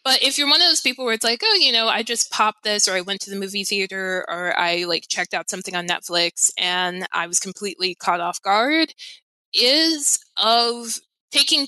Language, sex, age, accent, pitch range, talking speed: English, female, 20-39, American, 180-220 Hz, 215 wpm